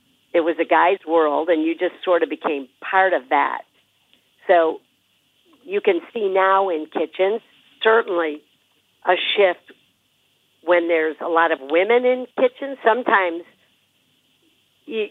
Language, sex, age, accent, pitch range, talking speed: English, female, 50-69, American, 160-195 Hz, 135 wpm